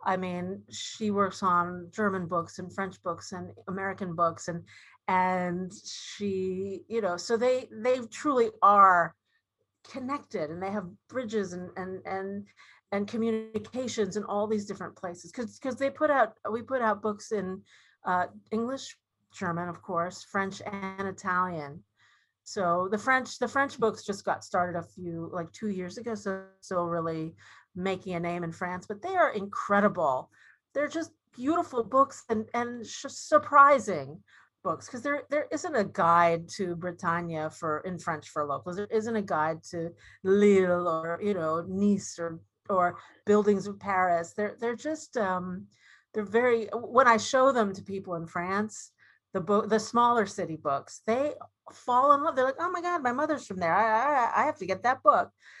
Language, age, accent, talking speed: English, 40-59, American, 175 wpm